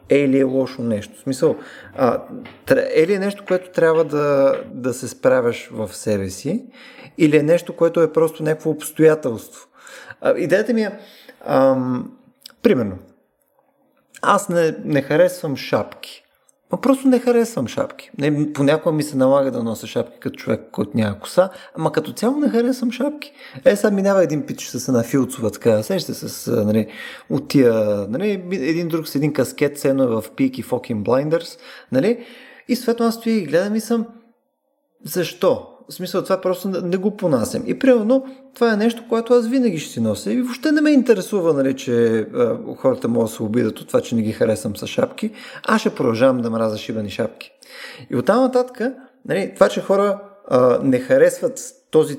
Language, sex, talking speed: Bulgarian, male, 175 wpm